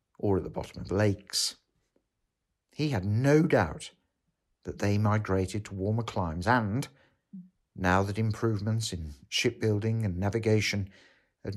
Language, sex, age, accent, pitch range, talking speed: English, male, 60-79, British, 95-130 Hz, 135 wpm